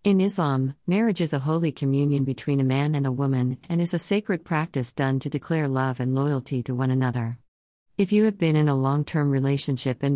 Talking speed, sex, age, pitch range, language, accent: 215 wpm, female, 40-59, 125-150 Hz, English, American